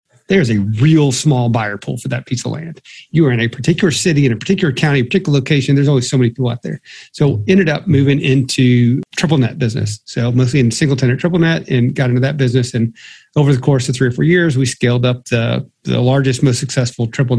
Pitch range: 120-140 Hz